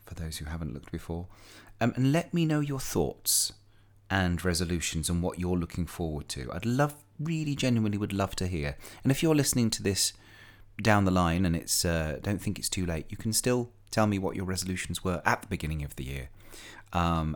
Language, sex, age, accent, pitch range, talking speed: English, male, 30-49, British, 80-100 Hz, 215 wpm